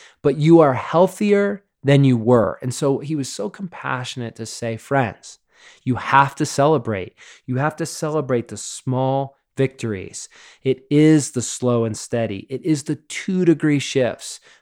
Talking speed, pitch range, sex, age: 160 wpm, 120-140 Hz, male, 20-39